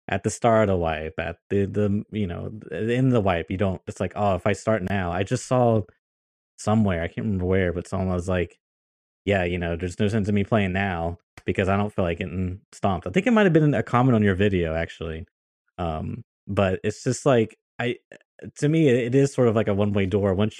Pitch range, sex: 95-120 Hz, male